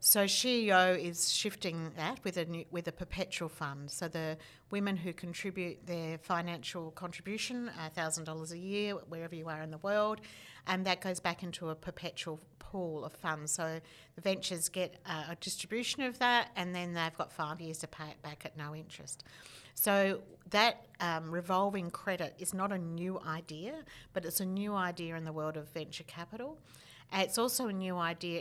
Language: English